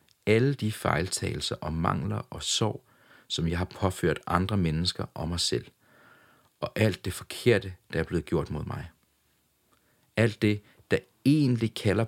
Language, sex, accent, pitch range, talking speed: English, male, Danish, 85-110 Hz, 155 wpm